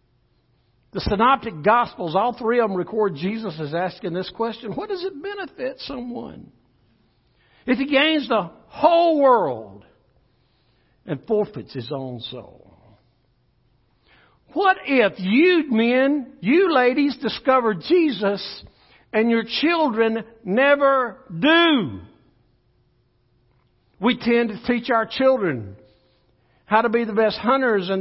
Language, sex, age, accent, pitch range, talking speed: English, male, 60-79, American, 175-275 Hz, 120 wpm